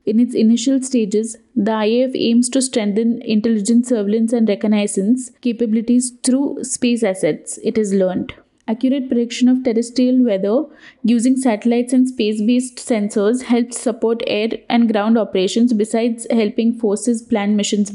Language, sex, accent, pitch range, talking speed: English, female, Indian, 220-255 Hz, 140 wpm